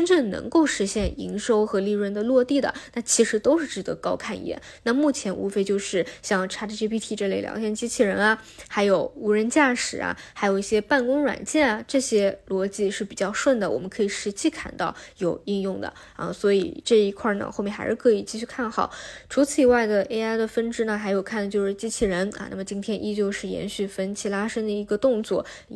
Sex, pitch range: female, 200-240 Hz